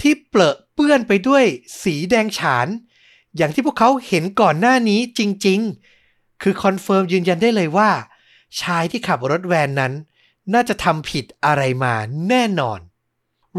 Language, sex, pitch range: Thai, male, 130-195 Hz